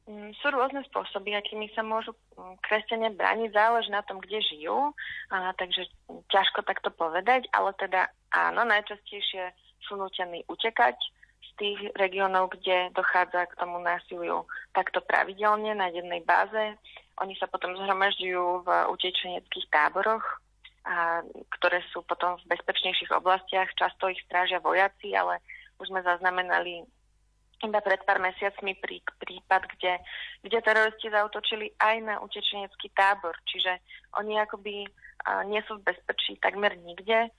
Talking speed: 135 wpm